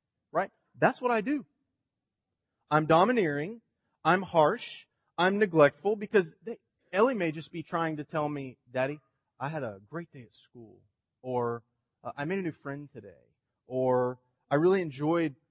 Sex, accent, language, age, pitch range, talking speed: male, American, English, 30-49, 125-180 Hz, 160 wpm